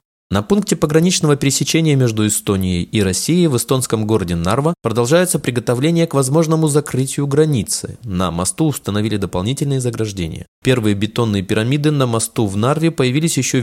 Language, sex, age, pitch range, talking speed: Russian, male, 20-39, 105-155 Hz, 140 wpm